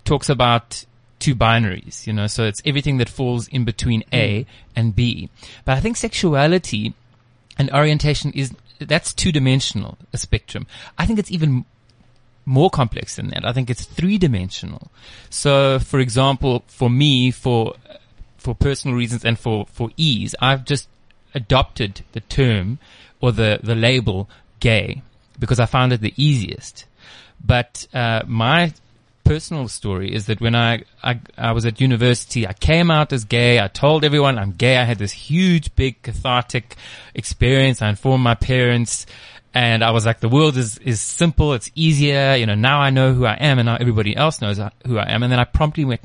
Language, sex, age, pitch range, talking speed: English, male, 30-49, 110-135 Hz, 180 wpm